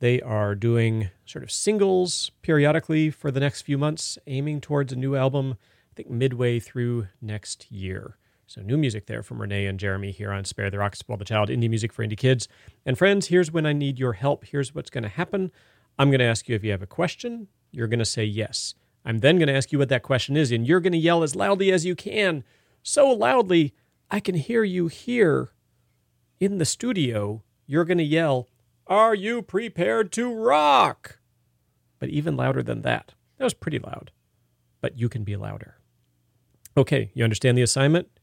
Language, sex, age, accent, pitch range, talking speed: English, male, 40-59, American, 105-160 Hz, 205 wpm